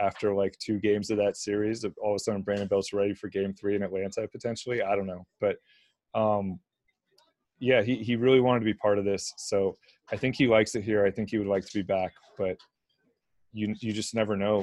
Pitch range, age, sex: 100-115 Hz, 30-49, male